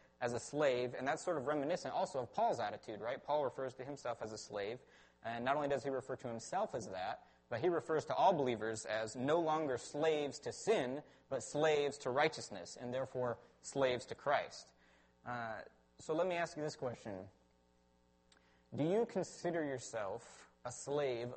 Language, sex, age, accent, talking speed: English, male, 30-49, American, 185 wpm